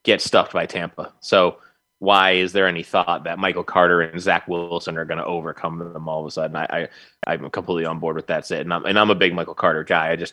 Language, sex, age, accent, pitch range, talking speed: English, male, 20-39, American, 90-110 Hz, 260 wpm